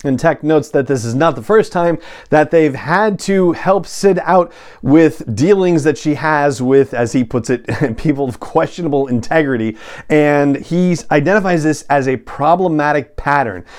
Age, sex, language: 40-59, male, English